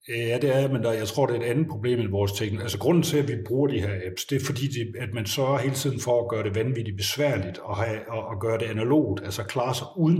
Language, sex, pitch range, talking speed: Danish, male, 105-135 Hz, 280 wpm